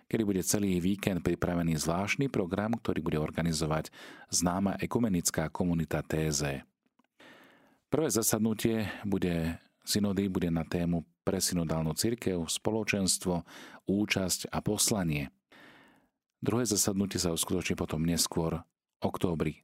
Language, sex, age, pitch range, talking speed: Slovak, male, 40-59, 80-100 Hz, 105 wpm